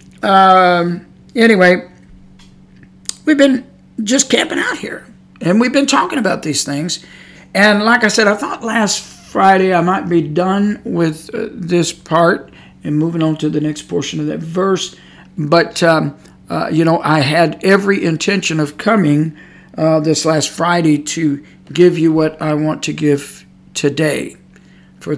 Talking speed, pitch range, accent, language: 155 wpm, 155-195 Hz, American, English